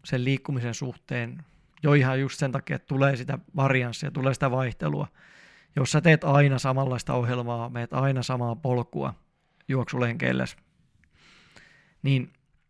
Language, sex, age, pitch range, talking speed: Finnish, male, 20-39, 125-145 Hz, 130 wpm